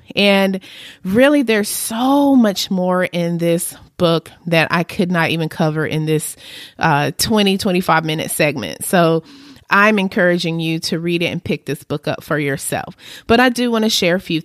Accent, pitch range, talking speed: American, 170-235 Hz, 185 wpm